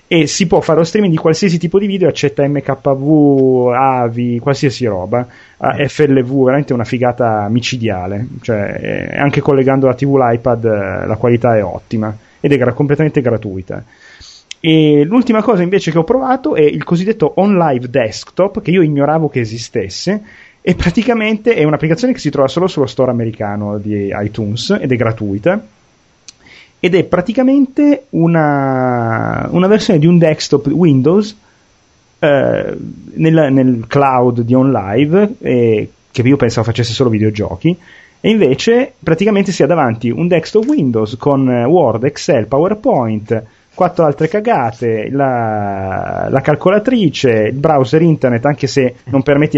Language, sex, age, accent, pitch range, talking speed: Italian, male, 30-49, native, 120-170 Hz, 145 wpm